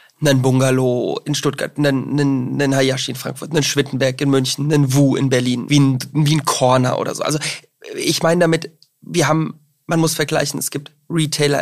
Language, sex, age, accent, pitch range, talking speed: German, male, 20-39, German, 135-150 Hz, 175 wpm